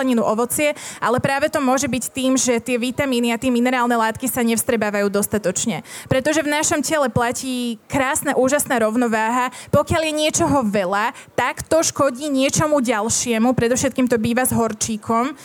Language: Slovak